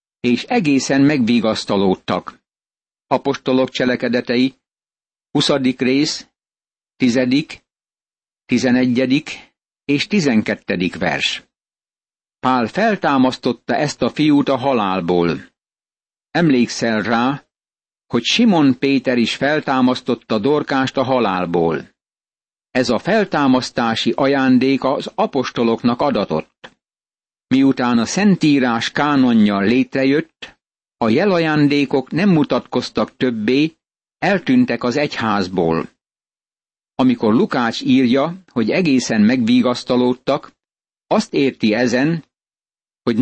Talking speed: 80 wpm